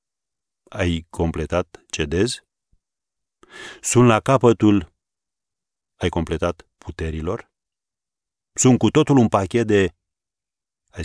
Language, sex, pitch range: Romanian, male, 85-105 Hz